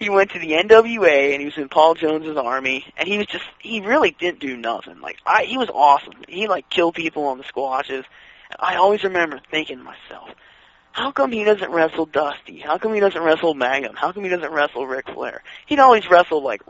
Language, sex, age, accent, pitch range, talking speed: English, male, 20-39, American, 140-180 Hz, 225 wpm